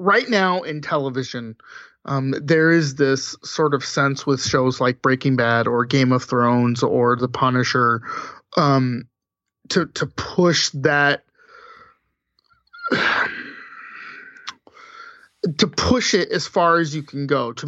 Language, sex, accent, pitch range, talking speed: English, male, American, 135-170 Hz, 130 wpm